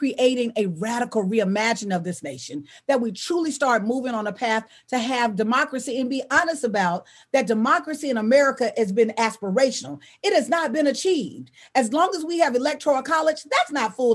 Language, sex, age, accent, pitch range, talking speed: English, female, 40-59, American, 220-285 Hz, 185 wpm